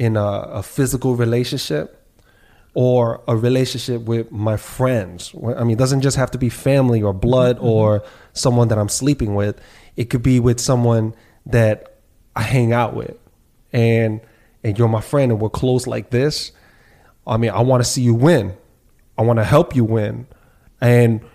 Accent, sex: American, male